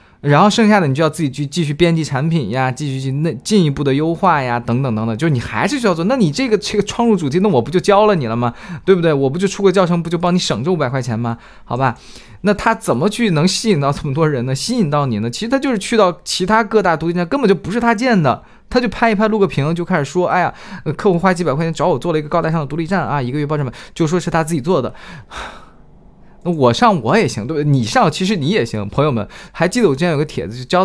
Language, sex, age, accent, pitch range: Chinese, male, 20-39, native, 130-185 Hz